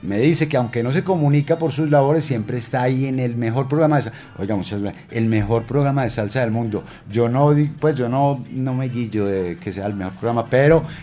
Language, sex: Spanish, male